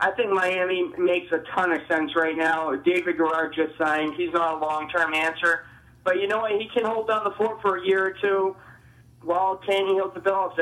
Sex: male